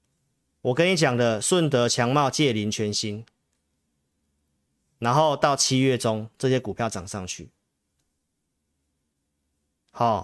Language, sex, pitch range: Chinese, male, 90-150 Hz